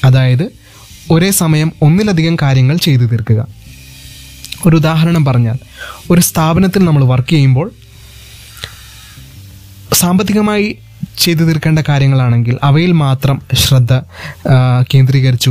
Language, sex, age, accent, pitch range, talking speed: Malayalam, male, 20-39, native, 125-160 Hz, 90 wpm